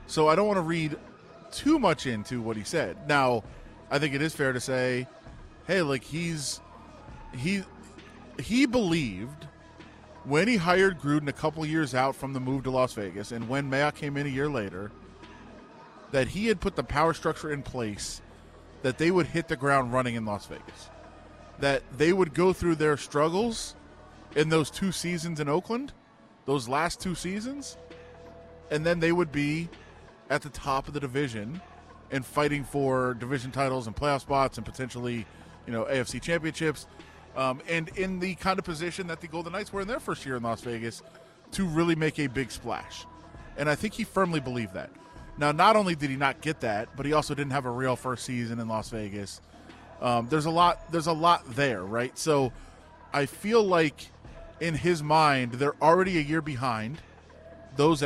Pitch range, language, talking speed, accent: 120-165 Hz, English, 190 wpm, American